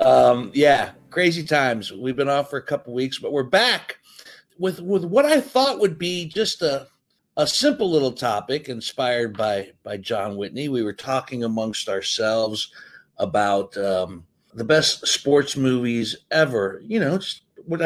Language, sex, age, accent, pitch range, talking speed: English, male, 60-79, American, 105-150 Hz, 160 wpm